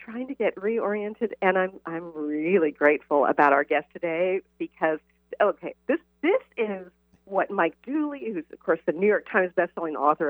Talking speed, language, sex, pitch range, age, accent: 175 wpm, English, female, 155-220 Hz, 50-69, American